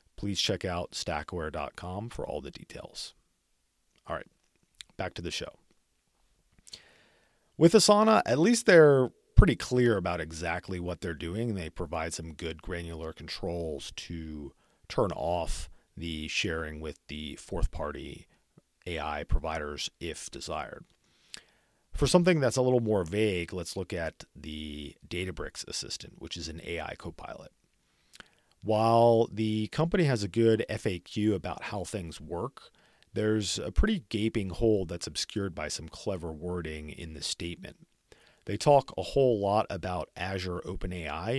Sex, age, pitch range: male, 40-59, 80-110 Hz